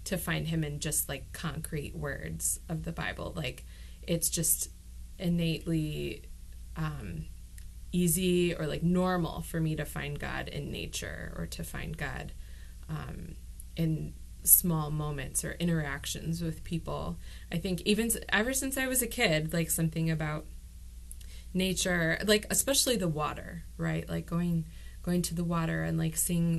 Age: 20-39